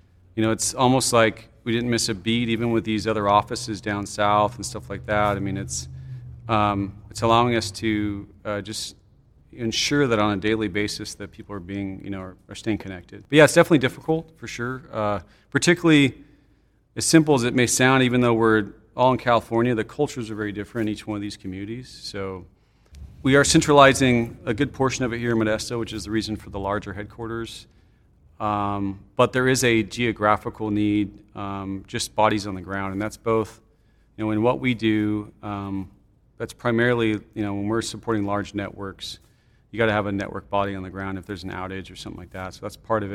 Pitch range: 100-120 Hz